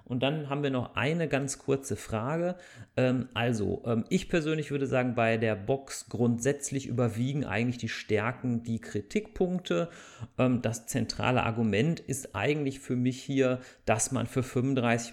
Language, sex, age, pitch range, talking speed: German, male, 40-59, 115-140 Hz, 145 wpm